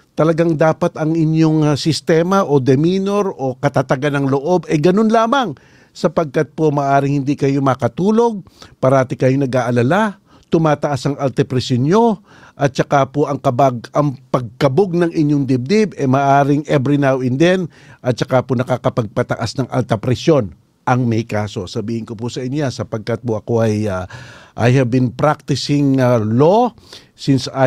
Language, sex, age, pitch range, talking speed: Filipino, male, 50-69, 125-155 Hz, 155 wpm